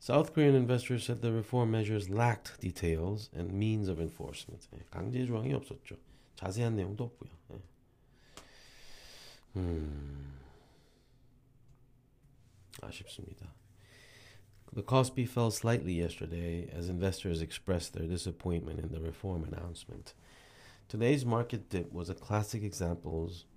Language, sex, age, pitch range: Korean, male, 30-49, 85-120 Hz